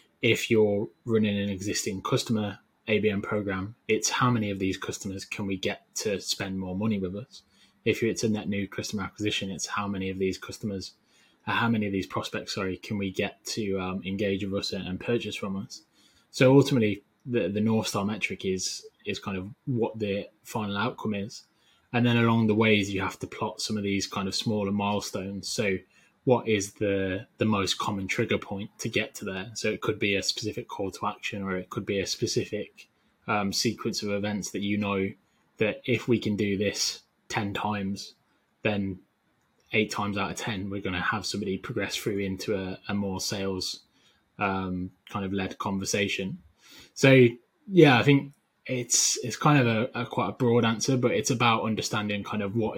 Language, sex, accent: English, male, British